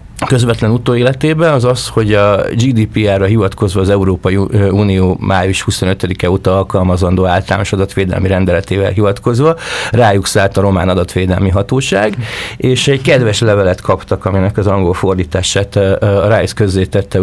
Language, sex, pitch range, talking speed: Hungarian, male, 95-115 Hz, 130 wpm